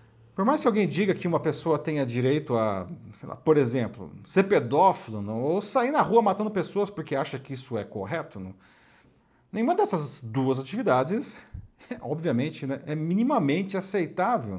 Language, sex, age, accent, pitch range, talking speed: Portuguese, male, 40-59, Brazilian, 120-185 Hz, 165 wpm